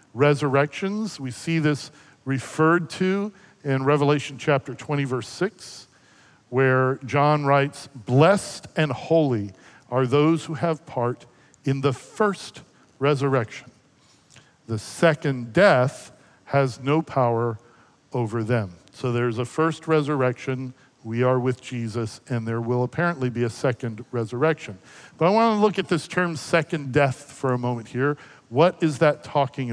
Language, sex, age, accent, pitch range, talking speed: English, male, 50-69, American, 125-165 Hz, 140 wpm